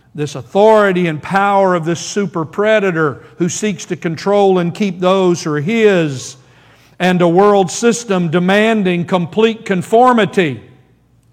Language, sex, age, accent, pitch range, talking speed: English, male, 50-69, American, 165-210 Hz, 135 wpm